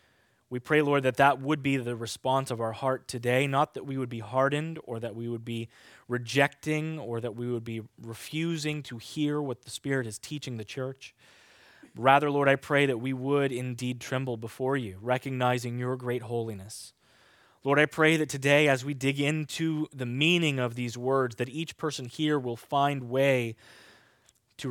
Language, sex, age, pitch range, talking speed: English, male, 20-39, 120-150 Hz, 185 wpm